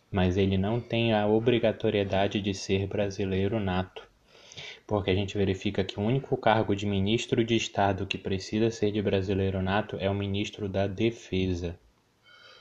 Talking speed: 155 wpm